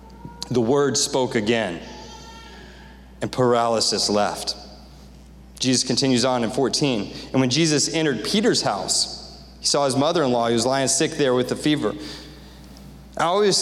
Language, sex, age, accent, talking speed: English, male, 30-49, American, 140 wpm